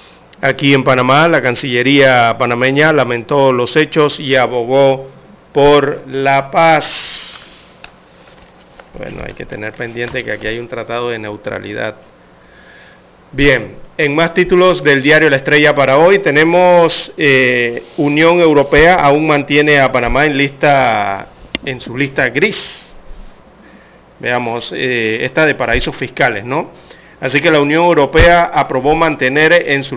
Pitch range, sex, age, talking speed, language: 130-160 Hz, male, 40-59, 130 wpm, Spanish